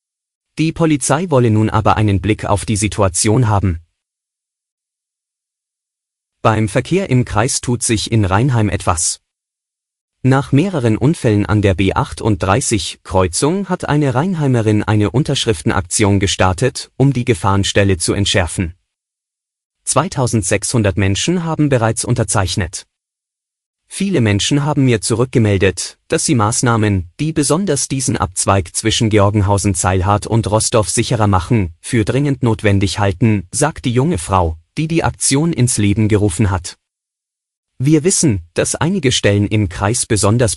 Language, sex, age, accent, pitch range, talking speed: German, male, 30-49, German, 100-125 Hz, 125 wpm